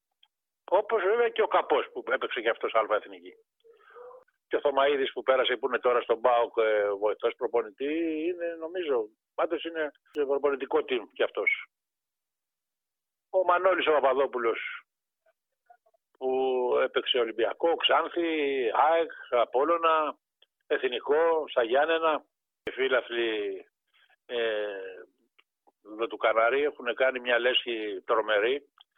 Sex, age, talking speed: male, 50-69, 110 wpm